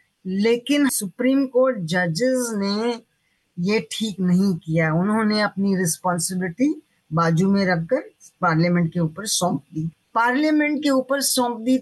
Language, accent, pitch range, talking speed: Hindi, native, 195-270 Hz, 125 wpm